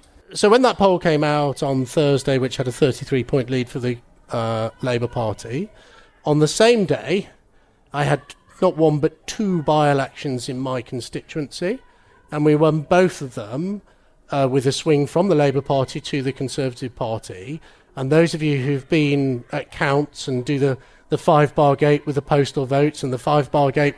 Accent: British